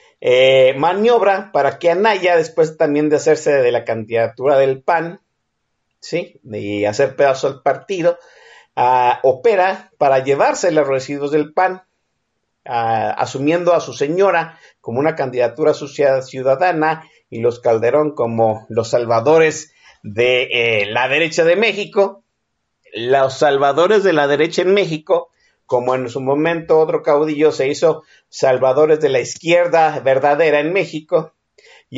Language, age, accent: Spanish, 50-69, Mexican